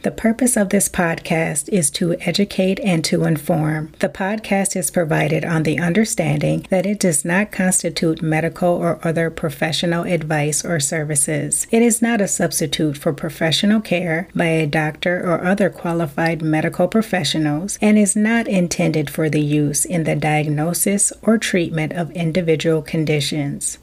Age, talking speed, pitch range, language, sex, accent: 30-49, 155 wpm, 160-185 Hz, English, female, American